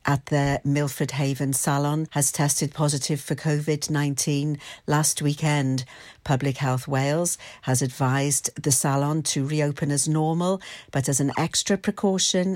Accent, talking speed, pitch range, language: British, 135 wpm, 140-160 Hz, English